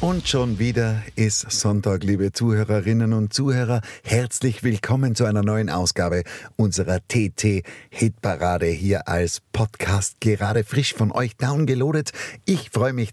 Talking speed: 130 wpm